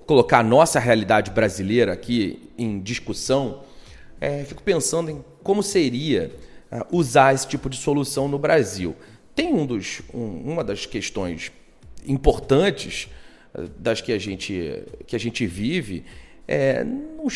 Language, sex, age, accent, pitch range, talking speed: Portuguese, male, 40-59, Brazilian, 110-150 Hz, 110 wpm